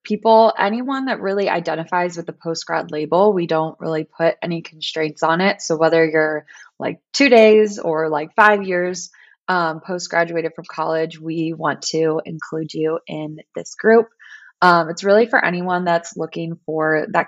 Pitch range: 155-180 Hz